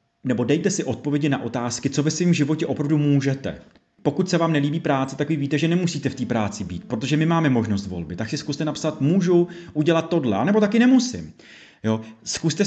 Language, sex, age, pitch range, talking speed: Czech, male, 30-49, 125-150 Hz, 205 wpm